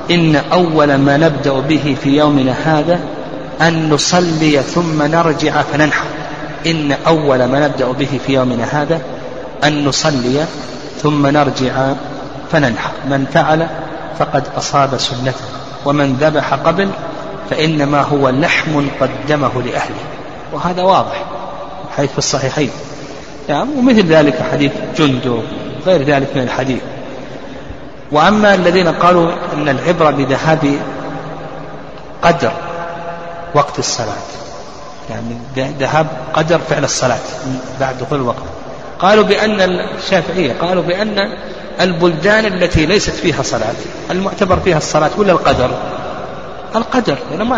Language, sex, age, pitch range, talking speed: Arabic, male, 40-59, 135-175 Hz, 110 wpm